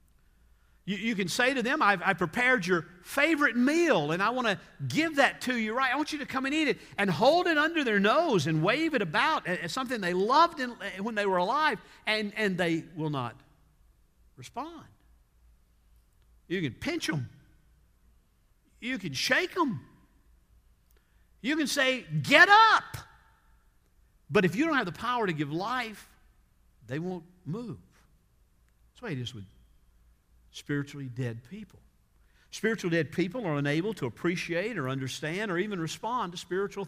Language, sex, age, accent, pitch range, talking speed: English, male, 50-69, American, 140-215 Hz, 165 wpm